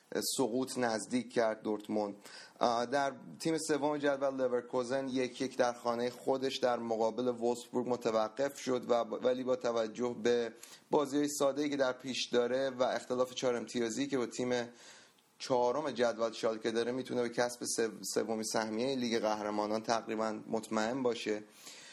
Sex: male